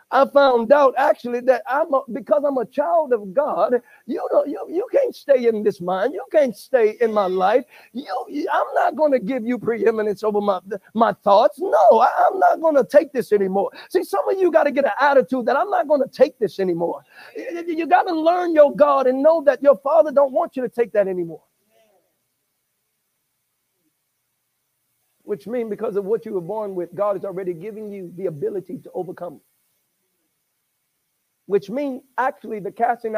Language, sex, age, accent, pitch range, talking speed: English, male, 50-69, American, 205-290 Hz, 195 wpm